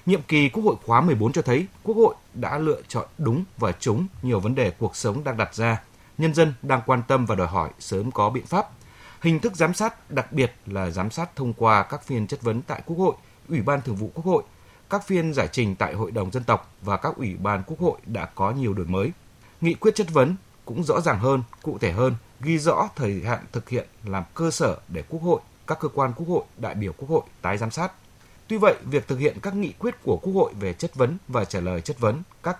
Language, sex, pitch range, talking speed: Vietnamese, male, 110-160 Hz, 250 wpm